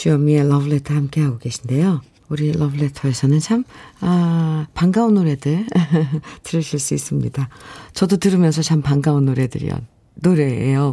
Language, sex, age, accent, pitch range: Korean, female, 50-69, native, 145-200 Hz